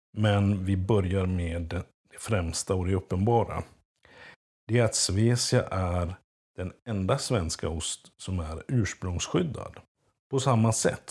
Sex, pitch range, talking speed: male, 90-115 Hz, 130 wpm